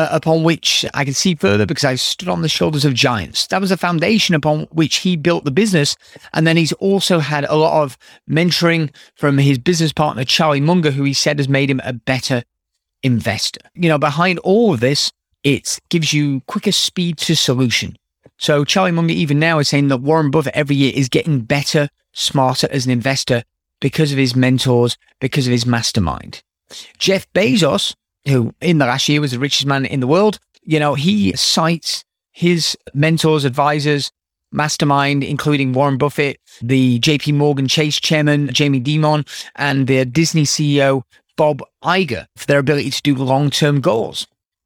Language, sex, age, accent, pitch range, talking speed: English, male, 30-49, British, 135-165 Hz, 180 wpm